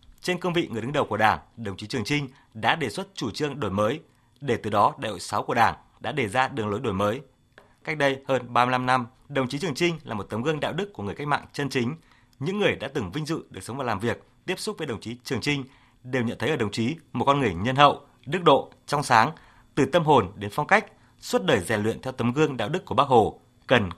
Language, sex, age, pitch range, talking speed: Vietnamese, male, 20-39, 115-150 Hz, 270 wpm